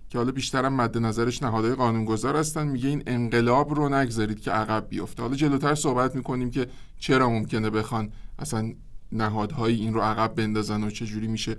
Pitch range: 115-140 Hz